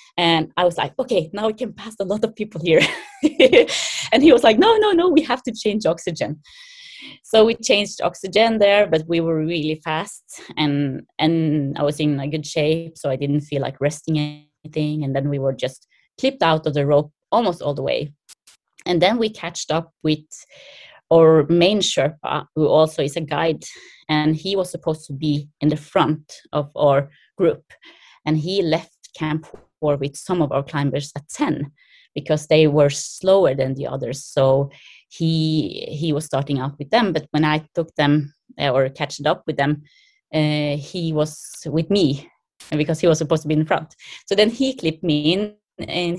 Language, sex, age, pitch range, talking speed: English, female, 20-39, 150-185 Hz, 190 wpm